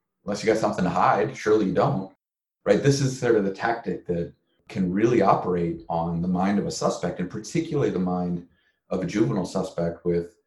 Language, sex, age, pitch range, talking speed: English, male, 30-49, 85-110 Hz, 200 wpm